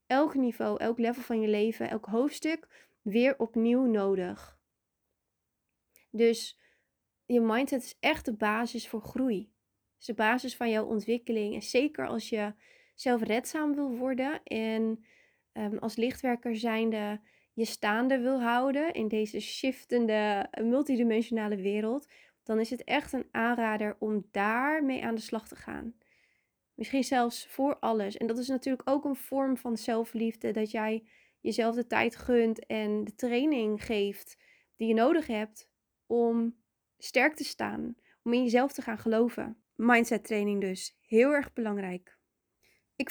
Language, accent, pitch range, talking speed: Dutch, Dutch, 220-260 Hz, 150 wpm